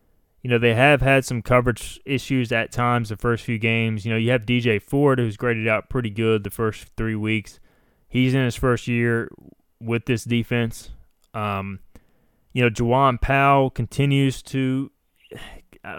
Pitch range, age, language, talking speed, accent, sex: 110-125 Hz, 20-39, English, 170 wpm, American, male